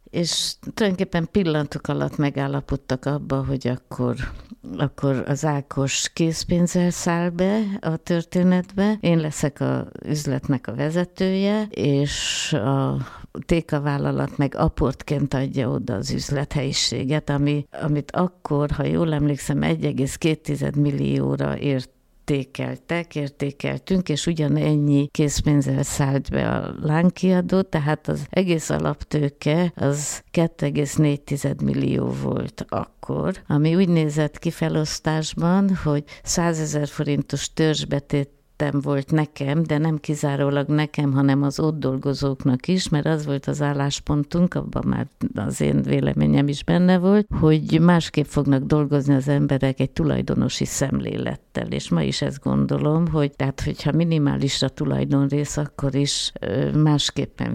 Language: Hungarian